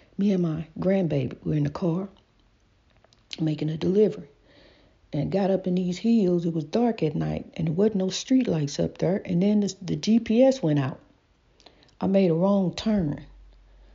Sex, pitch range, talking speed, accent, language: female, 180-250 Hz, 180 wpm, American, English